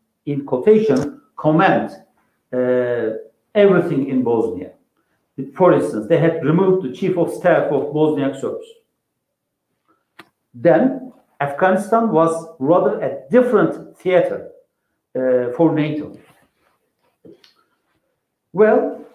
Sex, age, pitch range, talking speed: male, 60-79, 150-225 Hz, 95 wpm